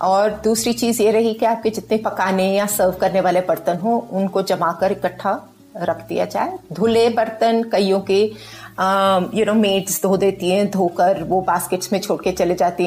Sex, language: female, Hindi